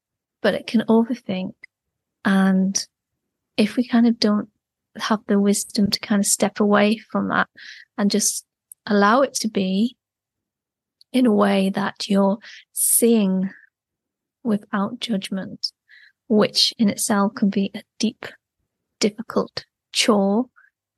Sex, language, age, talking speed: female, English, 30-49, 125 wpm